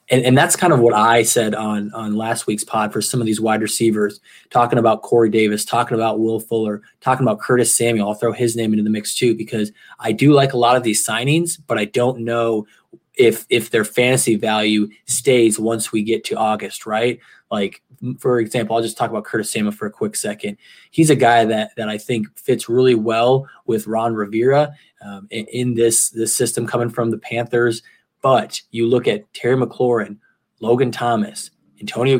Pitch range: 110-125 Hz